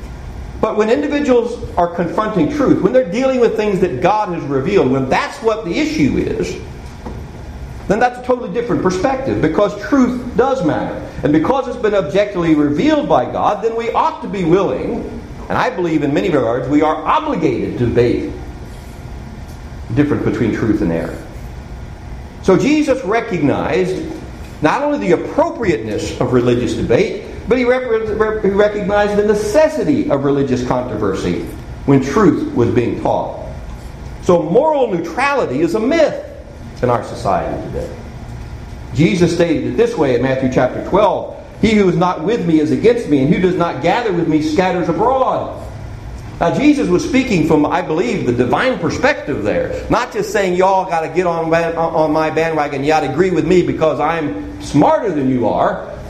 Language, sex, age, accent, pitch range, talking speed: English, male, 50-69, American, 145-225 Hz, 165 wpm